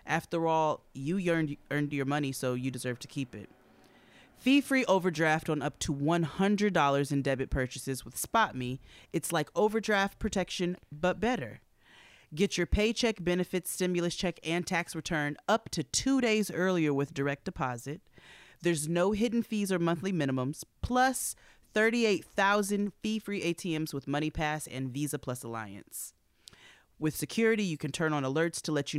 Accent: American